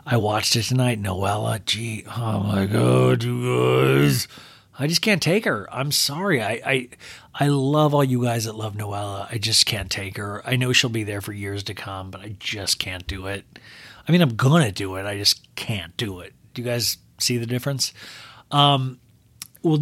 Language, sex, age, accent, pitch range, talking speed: English, male, 40-59, American, 105-140 Hz, 205 wpm